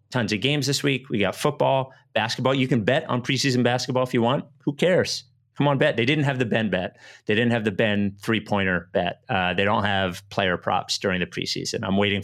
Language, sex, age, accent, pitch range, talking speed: English, male, 30-49, American, 100-125 Hz, 230 wpm